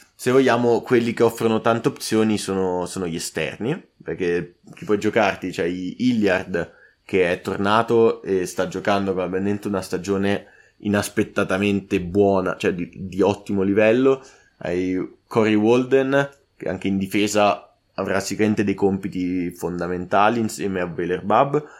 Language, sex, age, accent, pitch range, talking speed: Italian, male, 20-39, native, 95-120 Hz, 130 wpm